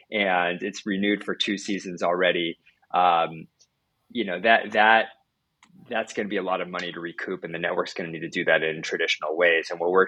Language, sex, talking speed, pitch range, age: English, male, 220 wpm, 95-120 Hz, 20-39